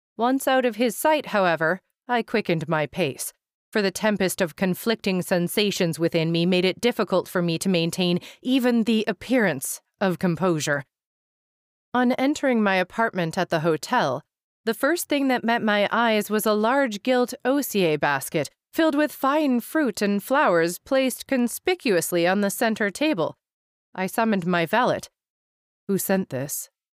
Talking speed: 155 wpm